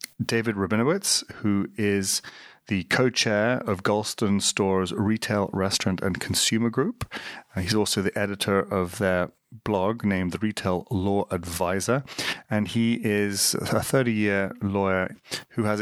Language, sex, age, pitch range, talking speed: English, male, 30-49, 95-110 Hz, 130 wpm